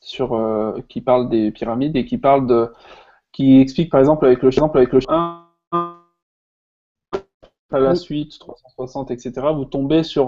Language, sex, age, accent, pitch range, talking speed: French, male, 20-39, French, 125-150 Hz, 165 wpm